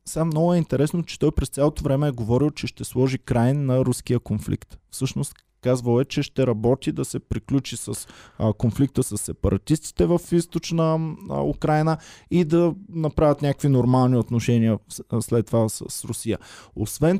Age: 20-39